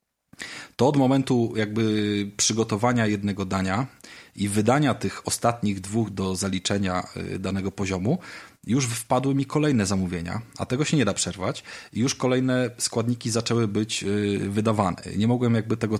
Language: Polish